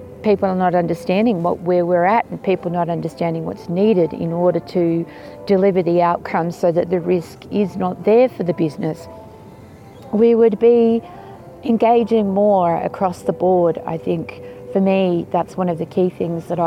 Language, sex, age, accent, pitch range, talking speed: English, female, 40-59, Australian, 165-200 Hz, 175 wpm